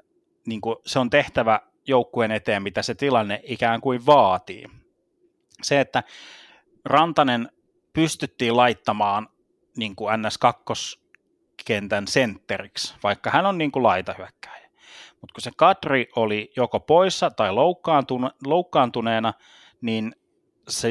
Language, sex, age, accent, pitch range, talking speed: Finnish, male, 30-49, native, 110-135 Hz, 105 wpm